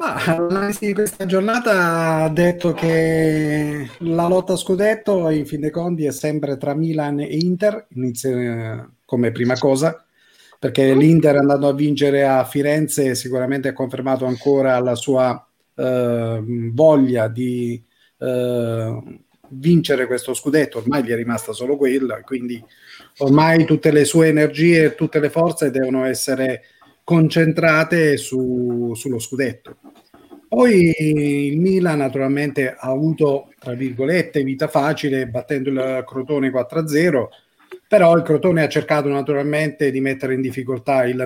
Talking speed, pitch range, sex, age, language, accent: 135 wpm, 130-155 Hz, male, 30-49, Italian, native